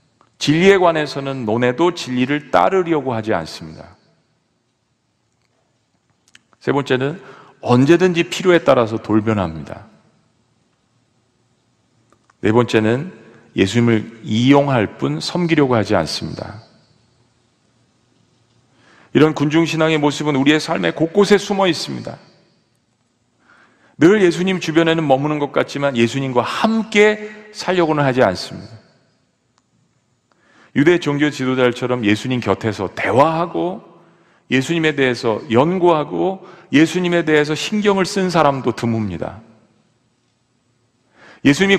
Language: Korean